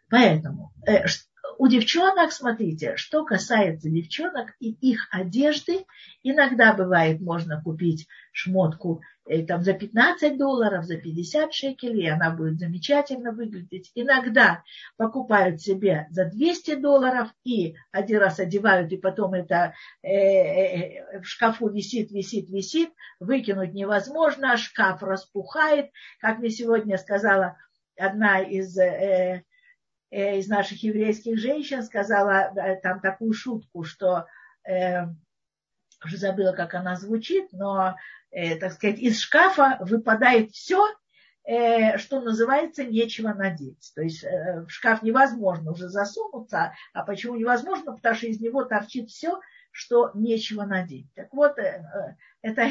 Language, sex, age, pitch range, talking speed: Russian, female, 50-69, 190-250 Hz, 130 wpm